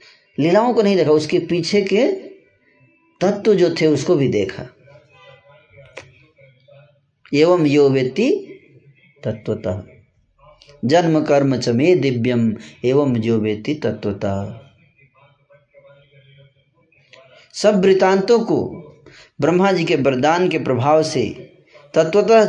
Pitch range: 125-165 Hz